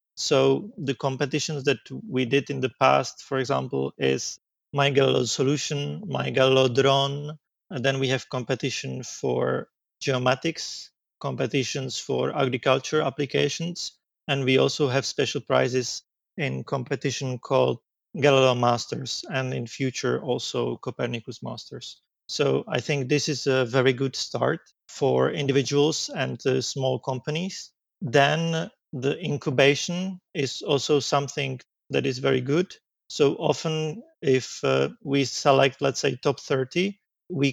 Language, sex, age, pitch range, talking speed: English, male, 30-49, 130-145 Hz, 130 wpm